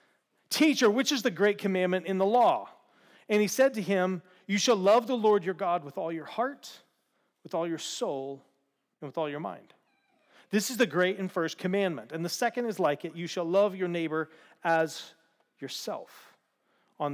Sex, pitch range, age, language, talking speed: male, 175-235 Hz, 40-59, English, 195 wpm